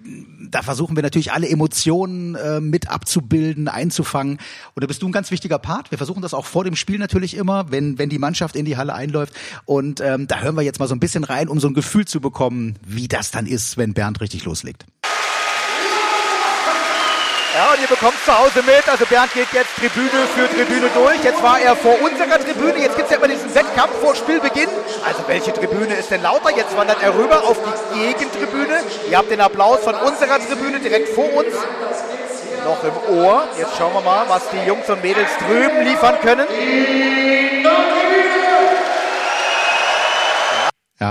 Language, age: German, 30-49